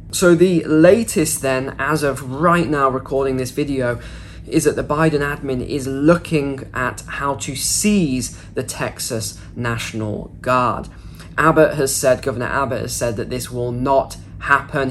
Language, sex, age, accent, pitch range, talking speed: English, male, 10-29, British, 115-160 Hz, 155 wpm